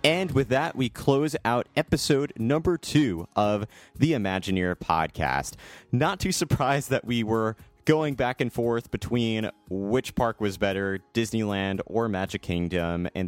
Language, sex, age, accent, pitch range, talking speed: English, male, 30-49, American, 95-130 Hz, 150 wpm